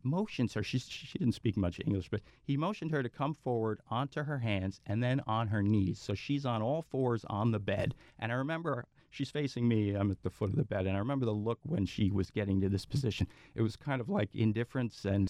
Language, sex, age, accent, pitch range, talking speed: English, male, 40-59, American, 105-140 Hz, 245 wpm